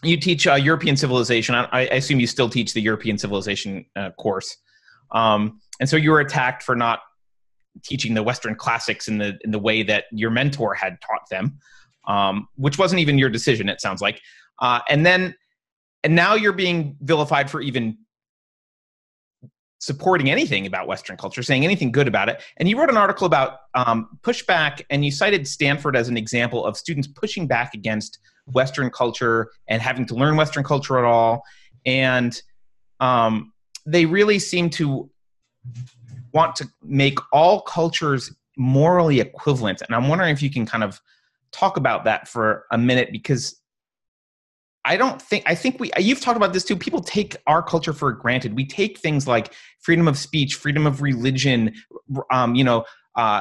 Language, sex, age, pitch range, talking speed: English, male, 30-49, 115-165 Hz, 175 wpm